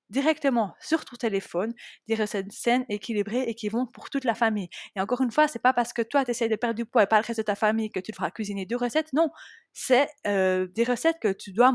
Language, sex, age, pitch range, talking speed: French, female, 20-39, 205-250 Hz, 265 wpm